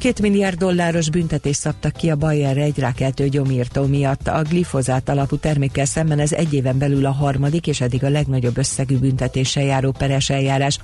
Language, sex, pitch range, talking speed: Hungarian, female, 130-150 Hz, 175 wpm